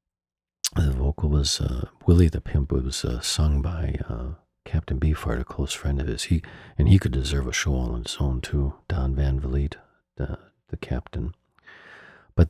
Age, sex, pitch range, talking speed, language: 50-69, male, 70-85 Hz, 180 wpm, English